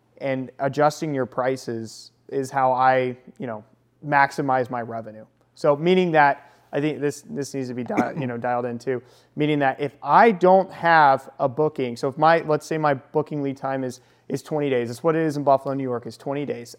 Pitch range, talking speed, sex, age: 130-165 Hz, 210 wpm, male, 30-49